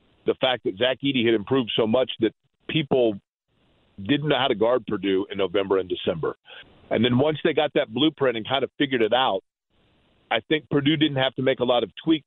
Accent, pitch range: American, 110-140 Hz